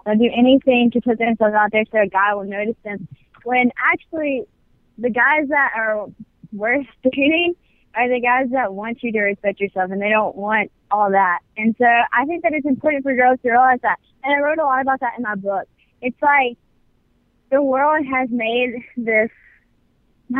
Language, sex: English, female